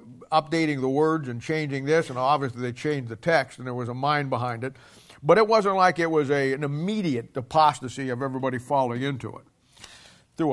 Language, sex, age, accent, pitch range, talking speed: English, male, 50-69, American, 130-160 Hz, 195 wpm